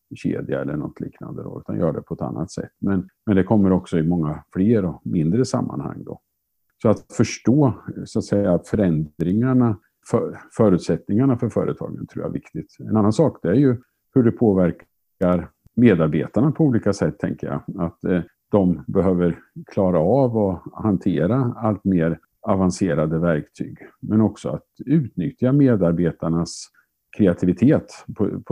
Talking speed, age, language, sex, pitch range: 135 wpm, 50-69, Swedish, male, 85-105 Hz